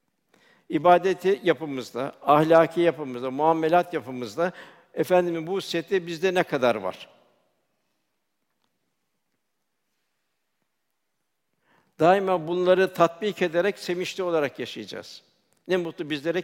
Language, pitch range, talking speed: Turkish, 155-180 Hz, 85 wpm